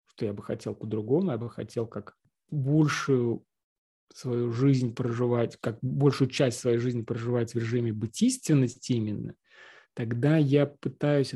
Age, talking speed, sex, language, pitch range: 30-49, 135 wpm, male, Russian, 115-140 Hz